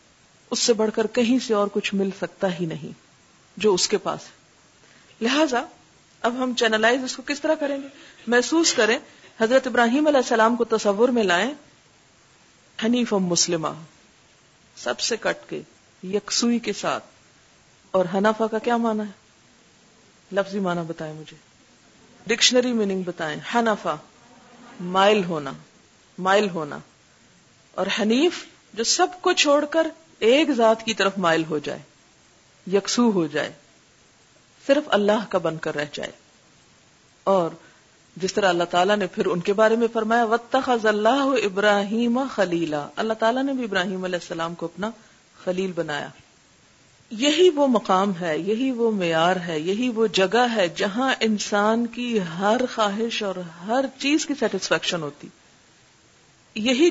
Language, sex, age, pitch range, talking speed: Urdu, female, 50-69, 185-245 Hz, 150 wpm